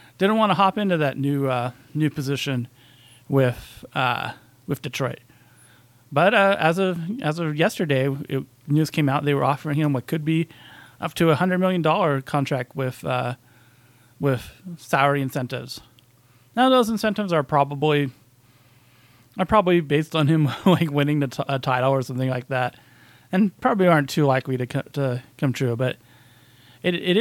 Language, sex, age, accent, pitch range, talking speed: English, male, 30-49, American, 125-160 Hz, 170 wpm